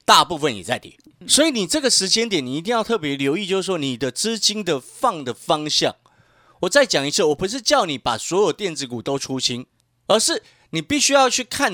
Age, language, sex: 30-49, Chinese, male